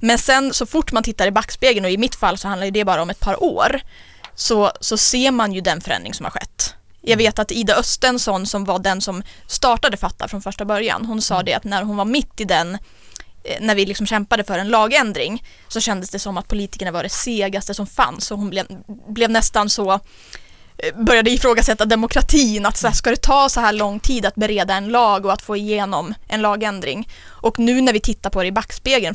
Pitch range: 195-235 Hz